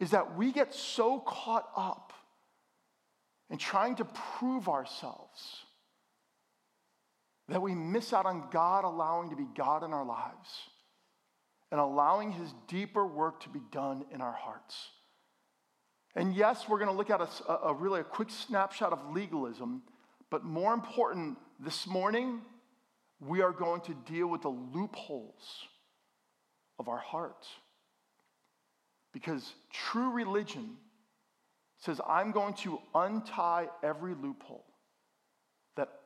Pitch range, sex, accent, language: 160-220 Hz, male, American, English